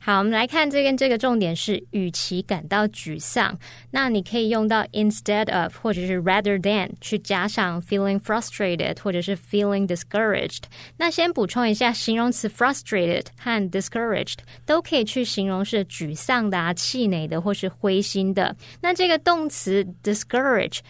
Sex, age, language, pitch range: female, 20-39, Chinese, 180-230 Hz